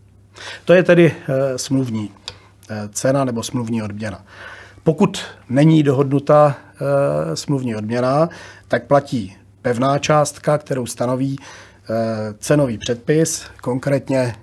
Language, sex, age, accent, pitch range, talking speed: Czech, male, 40-59, native, 110-145 Hz, 90 wpm